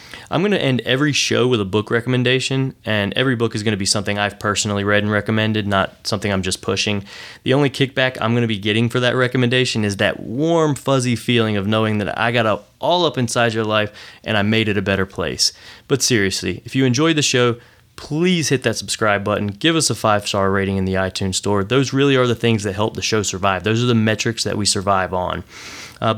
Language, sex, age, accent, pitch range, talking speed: English, male, 20-39, American, 105-130 Hz, 230 wpm